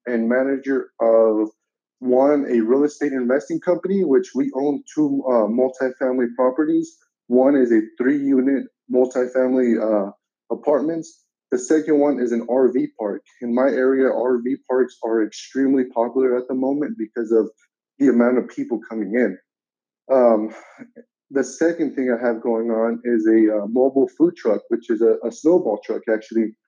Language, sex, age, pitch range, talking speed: English, male, 20-39, 115-140 Hz, 155 wpm